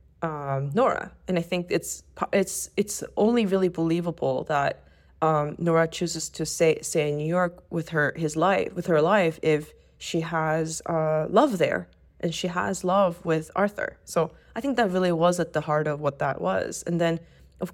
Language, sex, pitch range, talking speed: English, female, 160-185 Hz, 190 wpm